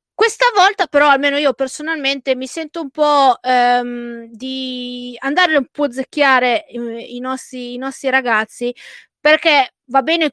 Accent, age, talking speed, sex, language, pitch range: native, 20-39, 145 wpm, female, Italian, 245-285 Hz